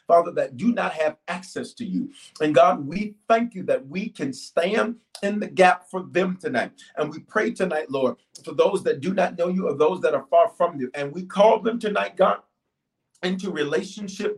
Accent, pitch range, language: American, 170-220 Hz, English